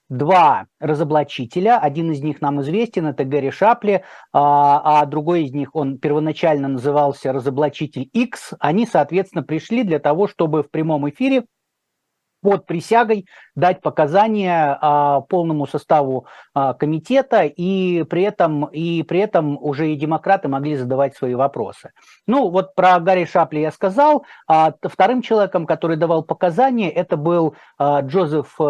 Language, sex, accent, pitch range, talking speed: Russian, male, native, 140-180 Hz, 130 wpm